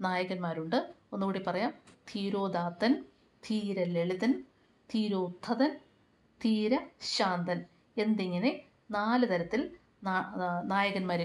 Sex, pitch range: female, 185-245 Hz